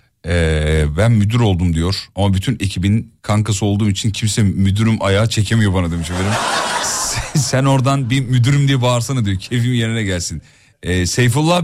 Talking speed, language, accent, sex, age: 155 wpm, Turkish, native, male, 40-59